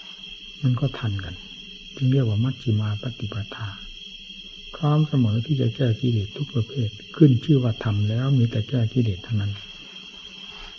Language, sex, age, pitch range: Thai, male, 60-79, 110-145 Hz